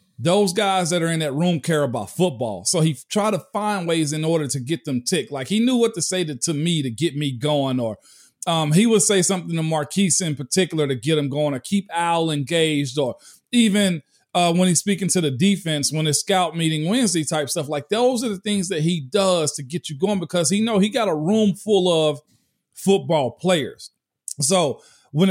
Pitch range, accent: 150-190 Hz, American